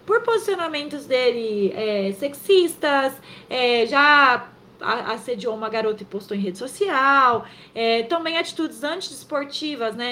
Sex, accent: female, Brazilian